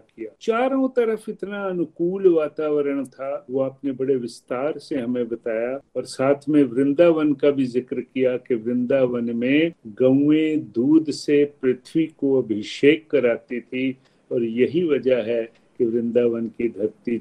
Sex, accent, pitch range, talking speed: male, native, 125-150 Hz, 140 wpm